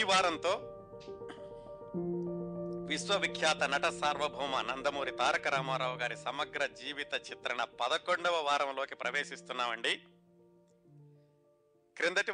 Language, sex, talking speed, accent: Telugu, male, 75 wpm, native